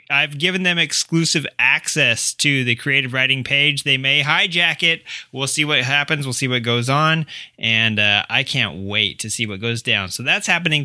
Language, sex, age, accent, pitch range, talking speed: English, male, 20-39, American, 135-175 Hz, 200 wpm